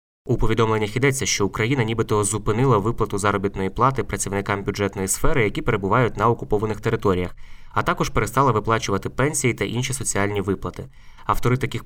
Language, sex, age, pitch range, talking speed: Ukrainian, male, 20-39, 100-125 Hz, 145 wpm